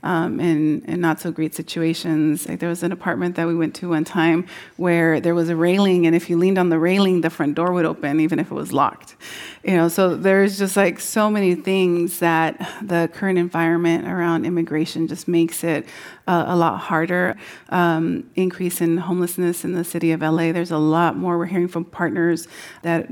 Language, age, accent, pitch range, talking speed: English, 30-49, American, 165-185 Hz, 195 wpm